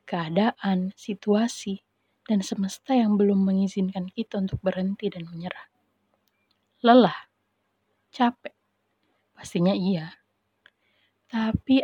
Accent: native